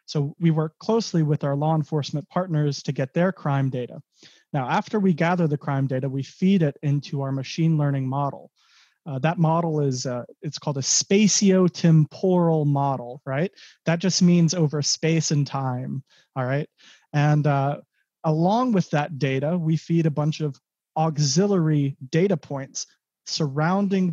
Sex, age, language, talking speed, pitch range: male, 30-49, English, 160 wpm, 145-185 Hz